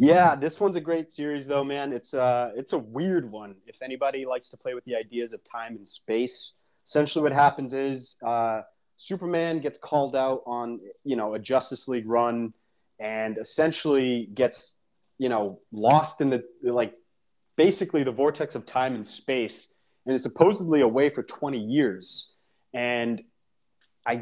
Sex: male